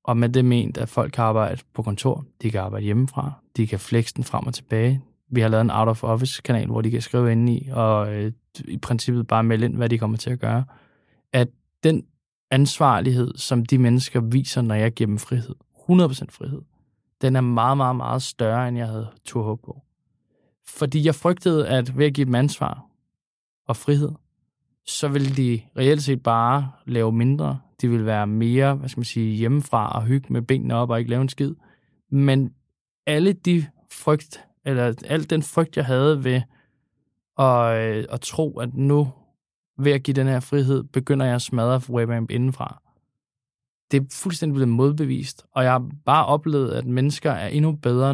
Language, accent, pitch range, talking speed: Danish, native, 115-140 Hz, 185 wpm